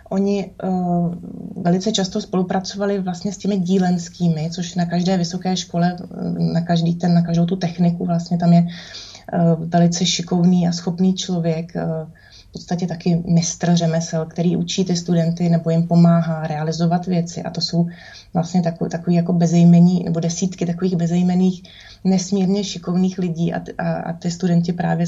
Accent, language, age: native, Czech, 20-39